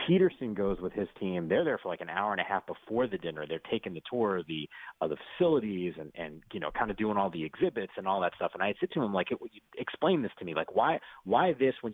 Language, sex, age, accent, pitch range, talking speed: English, male, 30-49, American, 90-115 Hz, 285 wpm